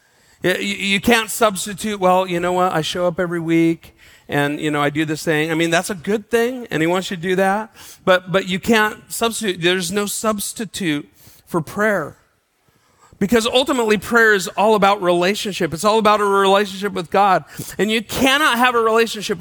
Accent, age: American, 40-59